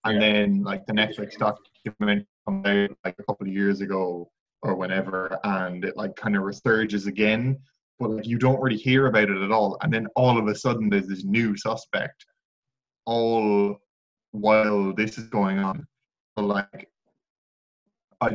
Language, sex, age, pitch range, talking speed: English, male, 20-39, 105-130 Hz, 170 wpm